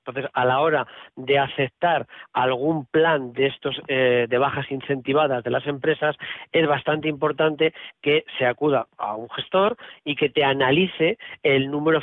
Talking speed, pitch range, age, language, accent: 160 wpm, 130-160 Hz, 40-59, Spanish, Spanish